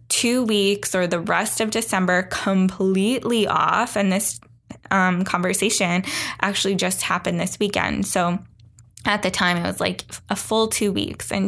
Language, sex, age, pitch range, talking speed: English, female, 10-29, 180-210 Hz, 155 wpm